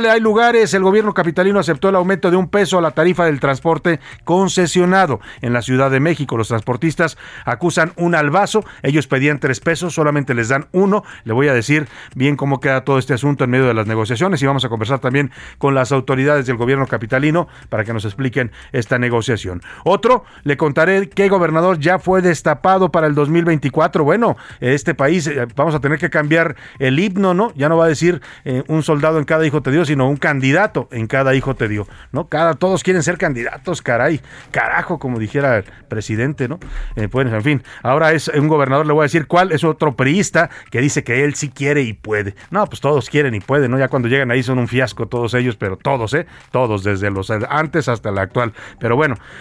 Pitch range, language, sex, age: 130-170 Hz, Spanish, male, 50-69